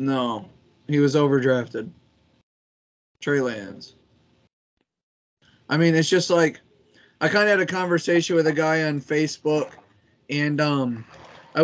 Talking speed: 130 wpm